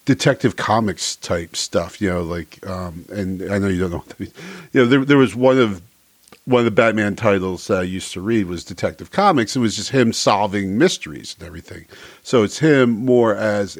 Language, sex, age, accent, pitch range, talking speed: English, male, 50-69, American, 95-115 Hz, 220 wpm